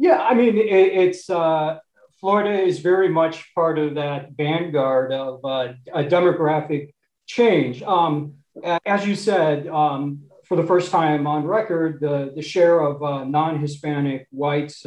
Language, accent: English, American